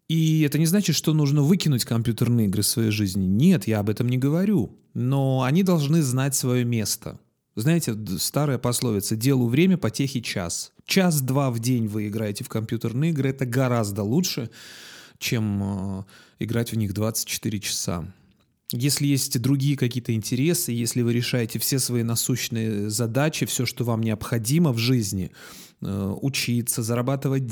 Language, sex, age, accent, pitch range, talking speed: Russian, male, 30-49, native, 115-145 Hz, 150 wpm